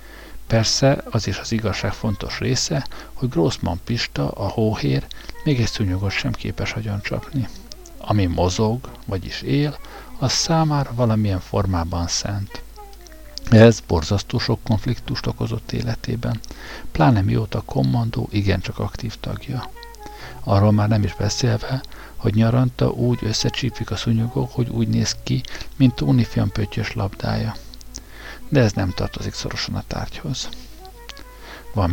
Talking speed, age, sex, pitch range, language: 125 wpm, 60-79, male, 100-120 Hz, Hungarian